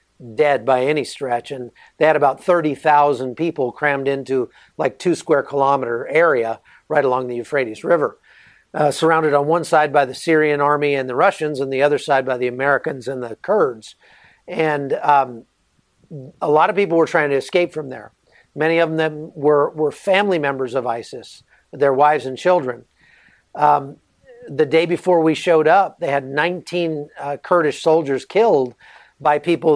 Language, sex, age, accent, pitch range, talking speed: English, male, 50-69, American, 140-165 Hz, 175 wpm